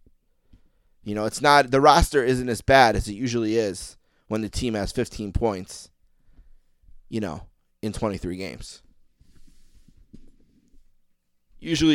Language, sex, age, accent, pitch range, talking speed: English, male, 30-49, American, 95-130 Hz, 125 wpm